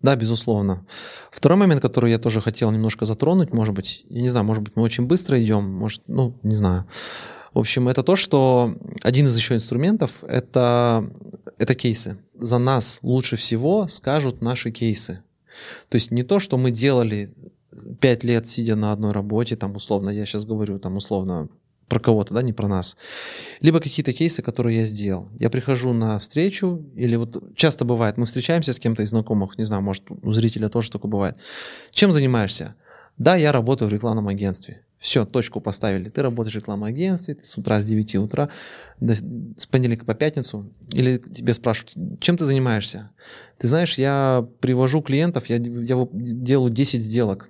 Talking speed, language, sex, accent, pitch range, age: 175 wpm, Russian, male, native, 105-130 Hz, 20-39